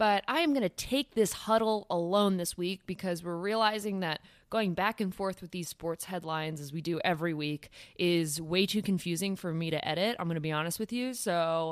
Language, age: English, 20-39